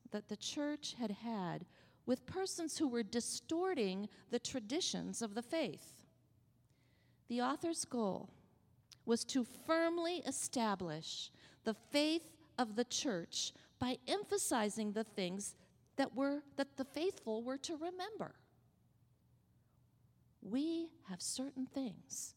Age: 40-59